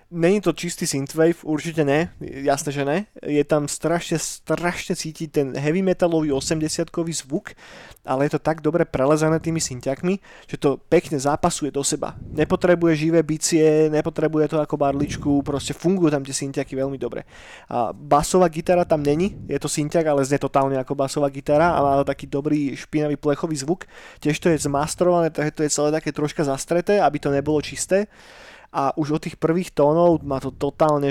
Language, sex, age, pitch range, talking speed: Slovak, male, 20-39, 140-165 Hz, 175 wpm